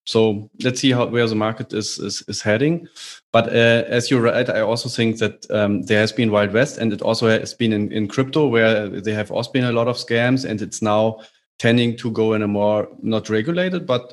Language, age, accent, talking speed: English, 30-49, German, 235 wpm